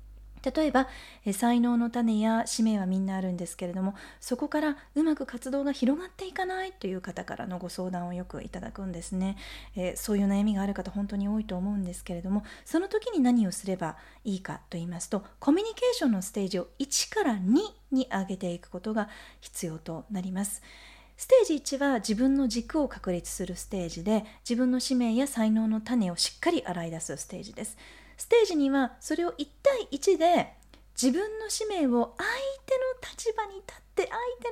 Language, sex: Japanese, female